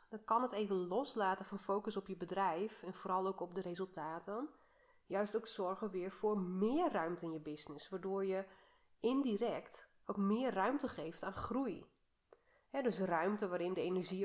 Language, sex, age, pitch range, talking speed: Dutch, female, 30-49, 185-225 Hz, 170 wpm